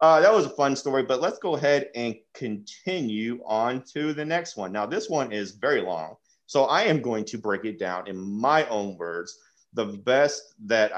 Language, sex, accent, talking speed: English, male, American, 210 wpm